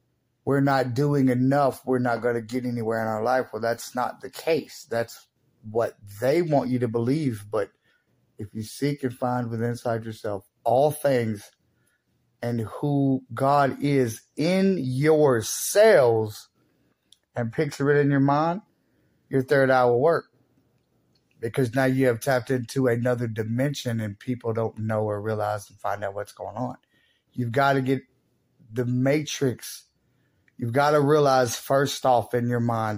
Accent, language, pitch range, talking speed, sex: American, English, 115-140 Hz, 160 wpm, male